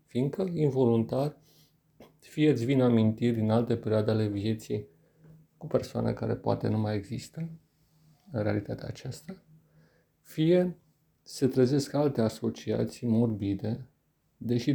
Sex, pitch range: male, 110-150 Hz